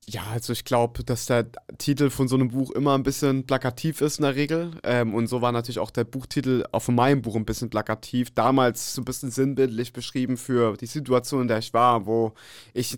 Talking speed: 220 wpm